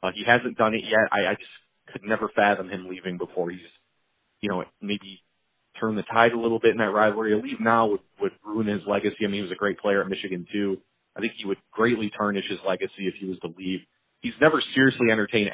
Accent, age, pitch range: American, 30-49, 95-110 Hz